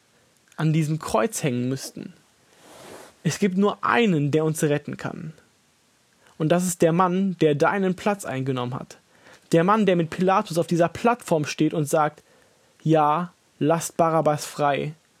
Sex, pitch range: male, 150-185 Hz